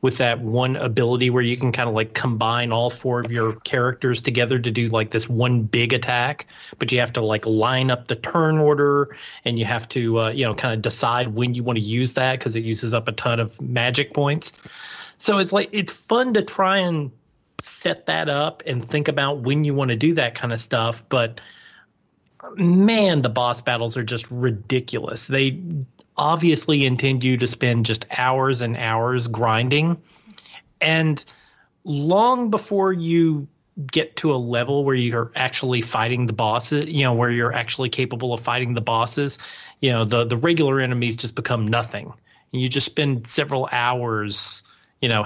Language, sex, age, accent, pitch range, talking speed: English, male, 30-49, American, 120-145 Hz, 190 wpm